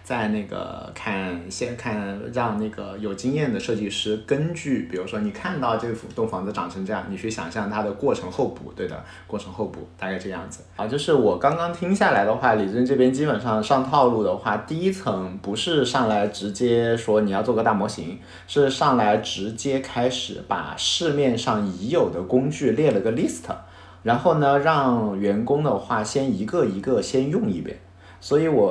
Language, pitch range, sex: Chinese, 100-140 Hz, male